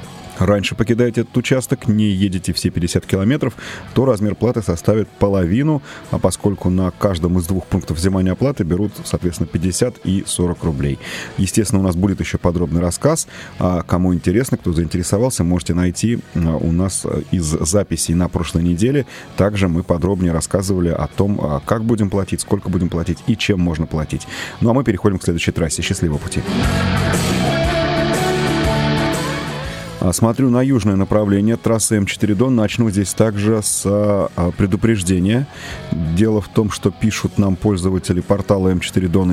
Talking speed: 145 wpm